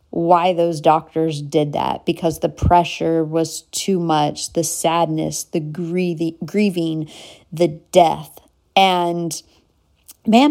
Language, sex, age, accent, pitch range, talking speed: English, female, 40-59, American, 170-240 Hz, 110 wpm